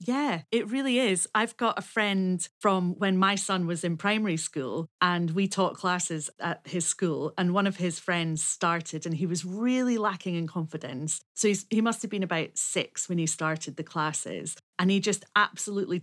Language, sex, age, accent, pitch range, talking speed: English, female, 40-59, British, 175-210 Hz, 195 wpm